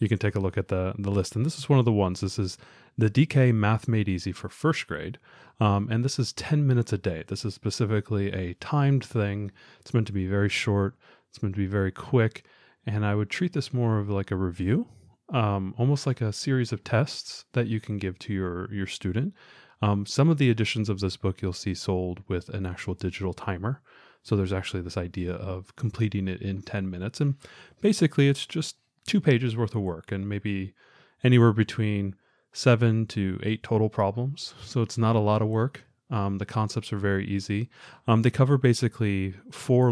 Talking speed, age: 210 wpm, 30-49